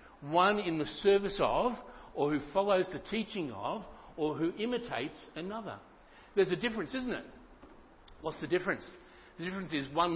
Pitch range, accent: 125-175 Hz, Australian